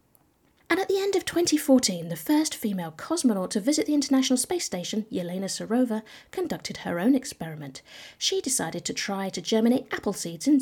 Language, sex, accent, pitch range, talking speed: English, female, British, 185-280 Hz, 175 wpm